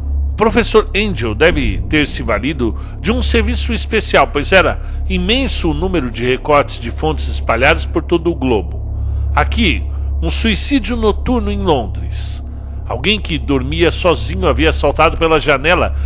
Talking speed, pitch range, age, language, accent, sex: 140 wpm, 70-115 Hz, 60-79, Portuguese, Brazilian, male